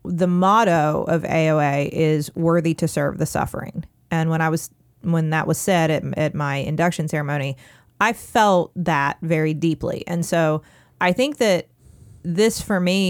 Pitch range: 150-180 Hz